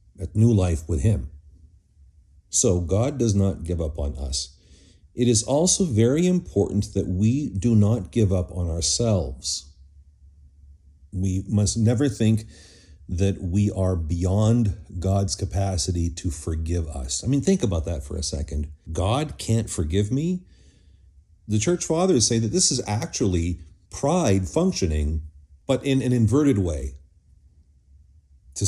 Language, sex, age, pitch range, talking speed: English, male, 50-69, 80-115 Hz, 140 wpm